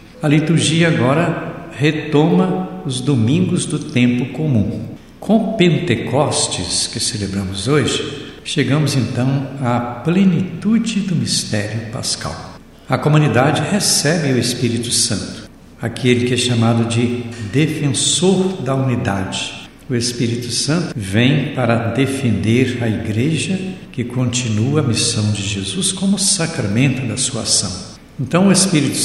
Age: 60-79